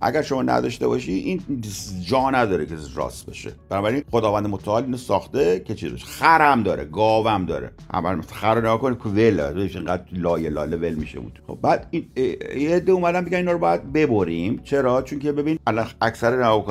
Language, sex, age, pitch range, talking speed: Persian, male, 50-69, 90-130 Hz, 175 wpm